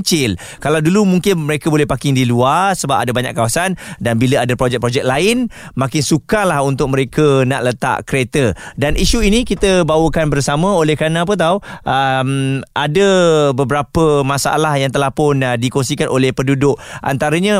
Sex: male